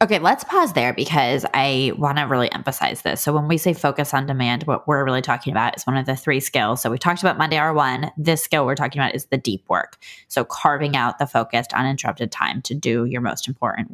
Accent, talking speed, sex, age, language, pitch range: American, 245 wpm, female, 20-39, English, 140-195 Hz